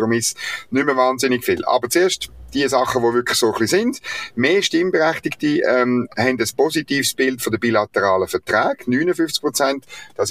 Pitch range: 110-170 Hz